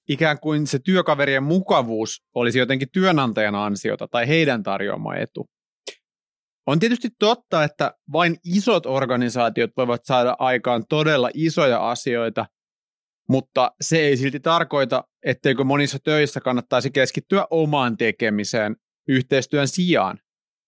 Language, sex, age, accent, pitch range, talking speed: Finnish, male, 30-49, native, 120-155 Hz, 115 wpm